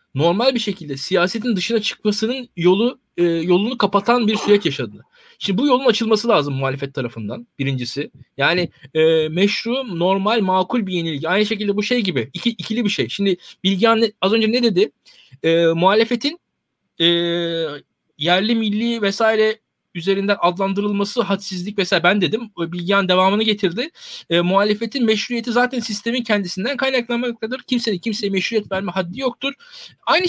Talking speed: 145 wpm